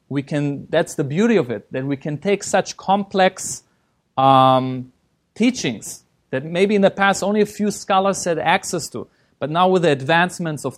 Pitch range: 140-195 Hz